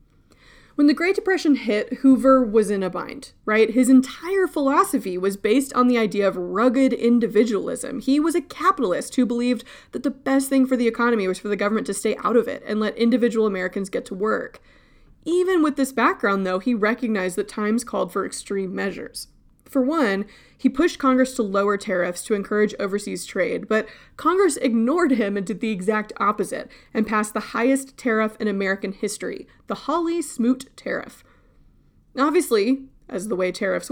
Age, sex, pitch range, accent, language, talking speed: 20-39, female, 215-265 Hz, American, English, 180 wpm